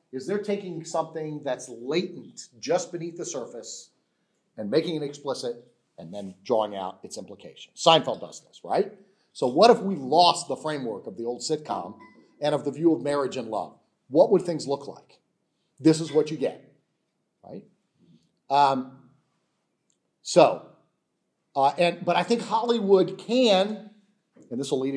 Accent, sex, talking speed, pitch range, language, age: American, male, 160 wpm, 145-210 Hz, English, 40-59